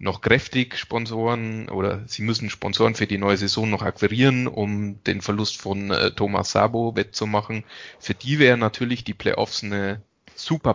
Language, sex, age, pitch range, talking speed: German, male, 30-49, 105-125 Hz, 155 wpm